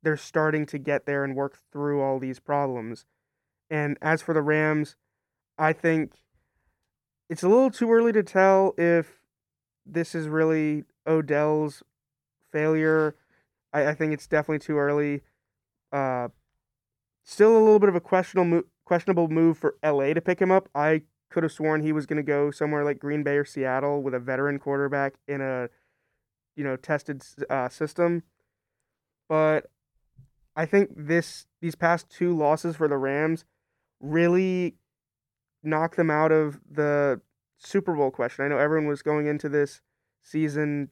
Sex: male